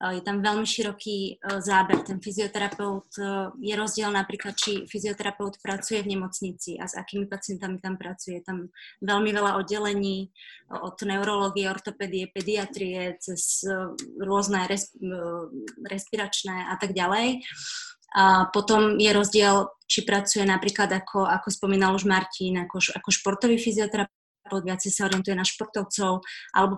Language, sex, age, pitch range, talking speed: Slovak, female, 20-39, 185-210 Hz, 125 wpm